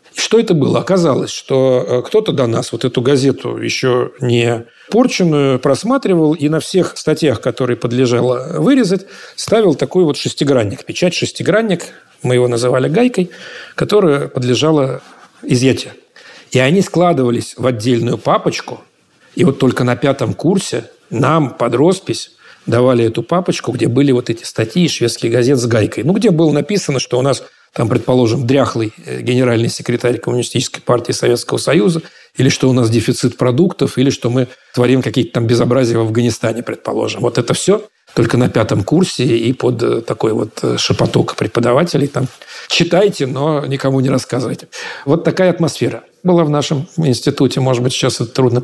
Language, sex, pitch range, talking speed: Russian, male, 125-170 Hz, 155 wpm